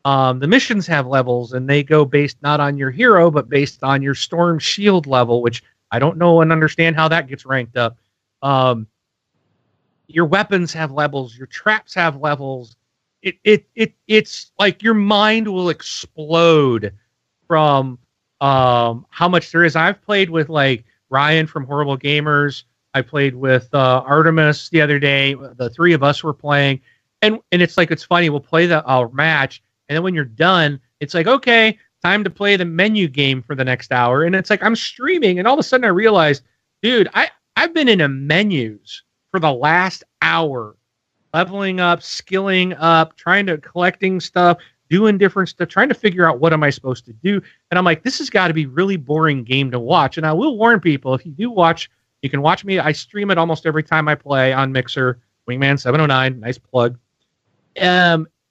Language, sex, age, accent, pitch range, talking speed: English, male, 40-59, American, 135-180 Hz, 200 wpm